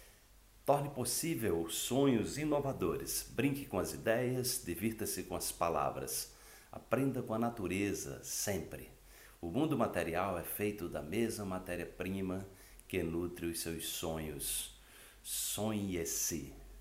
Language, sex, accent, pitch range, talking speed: Portuguese, male, Brazilian, 90-115 Hz, 115 wpm